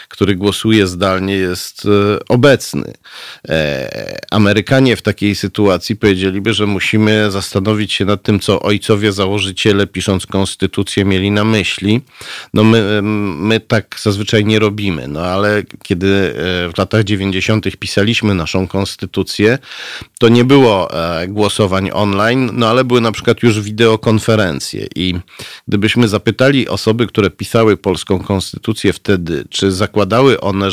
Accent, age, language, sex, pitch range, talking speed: native, 40-59, Polish, male, 95-110 Hz, 125 wpm